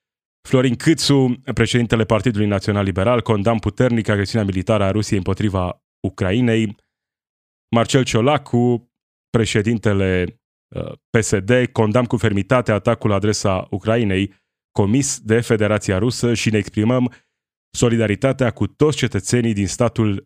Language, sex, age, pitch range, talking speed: Romanian, male, 20-39, 100-120 Hz, 110 wpm